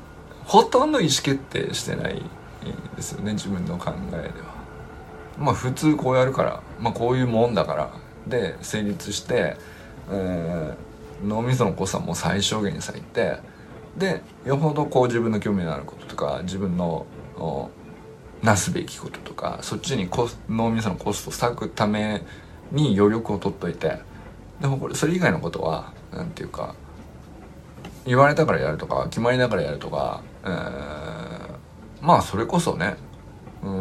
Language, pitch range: Japanese, 90-130 Hz